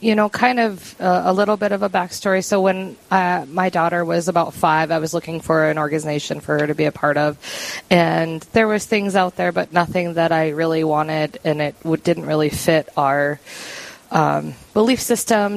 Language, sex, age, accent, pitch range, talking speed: English, female, 20-39, American, 155-180 Hz, 205 wpm